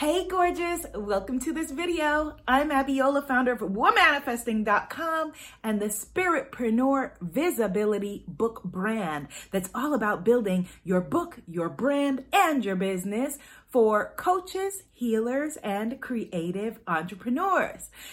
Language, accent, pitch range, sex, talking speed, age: English, American, 185-275 Hz, female, 115 wpm, 30-49